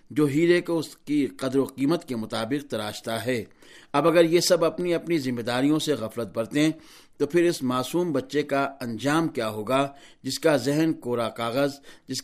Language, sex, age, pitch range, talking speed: Urdu, male, 60-79, 125-155 Hz, 185 wpm